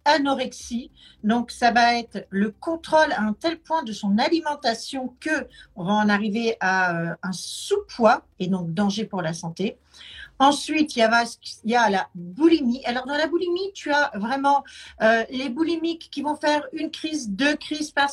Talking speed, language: 180 wpm, French